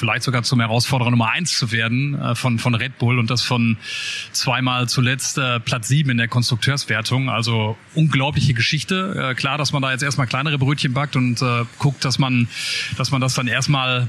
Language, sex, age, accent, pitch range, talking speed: German, male, 30-49, German, 125-150 Hz, 200 wpm